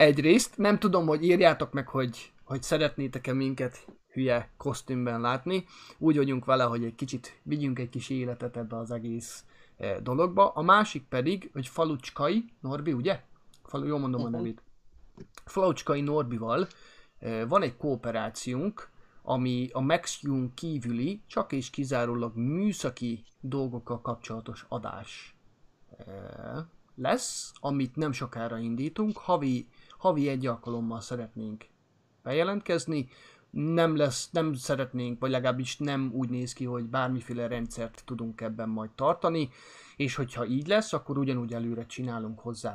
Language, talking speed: Hungarian, 130 wpm